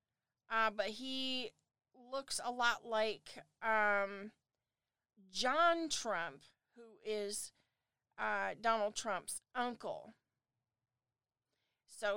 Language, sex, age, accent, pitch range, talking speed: English, female, 40-59, American, 200-260 Hz, 85 wpm